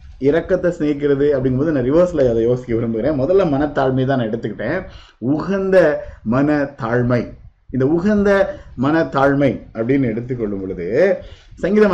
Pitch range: 110-150 Hz